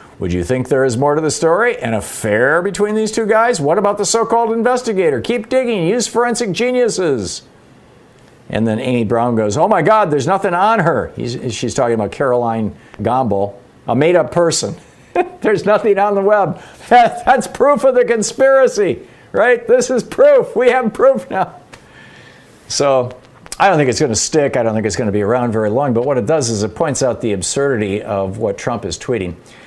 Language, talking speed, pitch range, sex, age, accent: English, 195 wpm, 110-180 Hz, male, 50-69, American